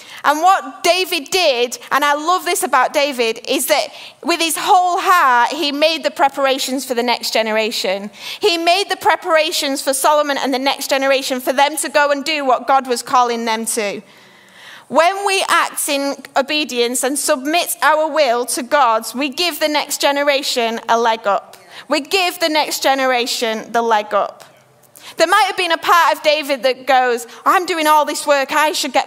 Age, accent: 30-49, British